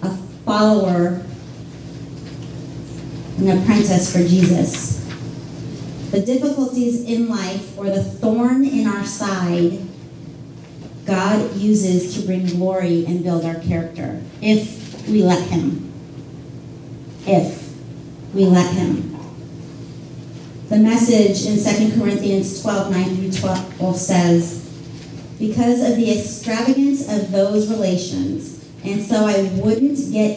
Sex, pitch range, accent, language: female, 160-220 Hz, American, English